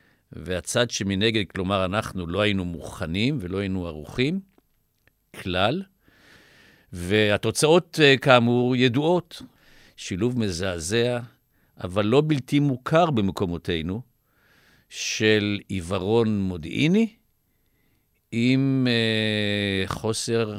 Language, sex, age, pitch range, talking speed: Hebrew, male, 50-69, 95-120 Hz, 75 wpm